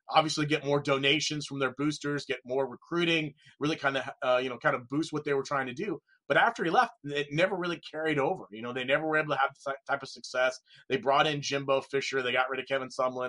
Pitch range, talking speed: 130-155 Hz, 260 wpm